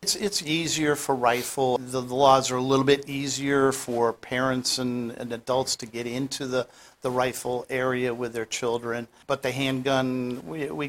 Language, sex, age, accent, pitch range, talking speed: English, male, 50-69, American, 120-140 Hz, 180 wpm